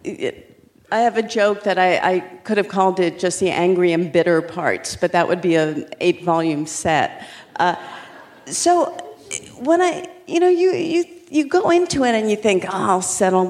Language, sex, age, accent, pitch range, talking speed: English, female, 50-69, American, 160-215 Hz, 195 wpm